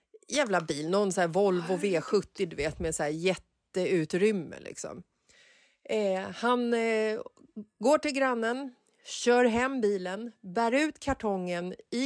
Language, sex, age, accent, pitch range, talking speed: Swedish, female, 30-49, native, 190-255 Hz, 135 wpm